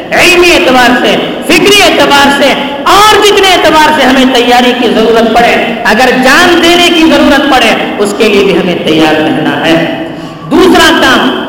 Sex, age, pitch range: female, 50-69, 240-335 Hz